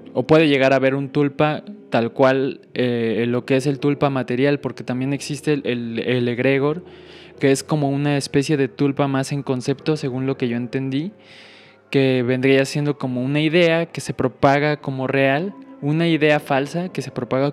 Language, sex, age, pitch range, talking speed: English, male, 20-39, 130-150 Hz, 190 wpm